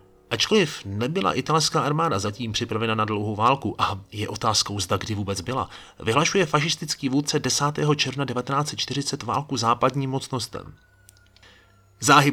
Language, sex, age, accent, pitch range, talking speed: Czech, male, 30-49, native, 100-135 Hz, 125 wpm